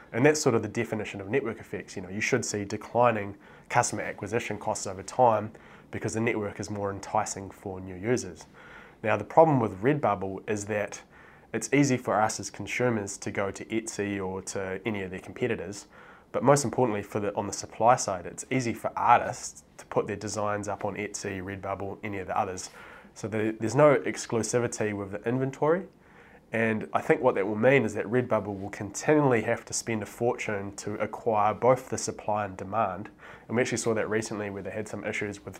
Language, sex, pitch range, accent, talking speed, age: English, male, 100-115 Hz, Australian, 205 wpm, 20-39